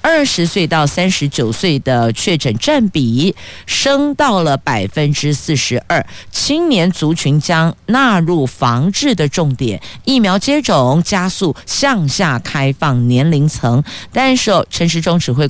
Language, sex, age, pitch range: Chinese, female, 50-69, 135-200 Hz